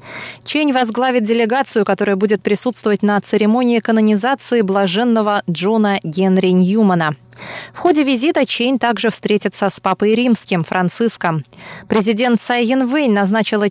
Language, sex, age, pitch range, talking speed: Russian, female, 20-39, 185-240 Hz, 115 wpm